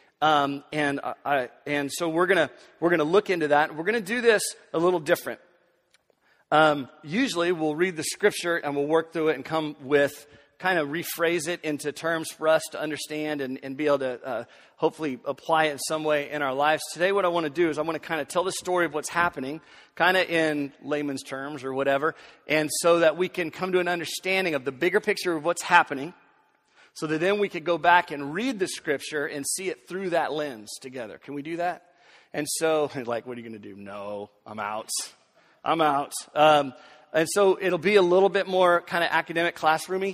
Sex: male